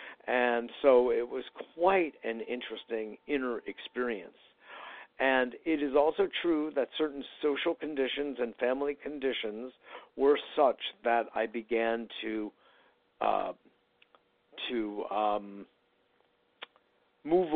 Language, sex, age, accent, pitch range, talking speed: English, male, 60-79, American, 115-145 Hz, 105 wpm